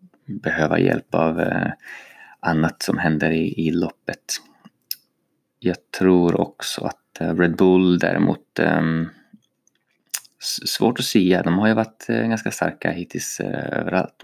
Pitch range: 85-100 Hz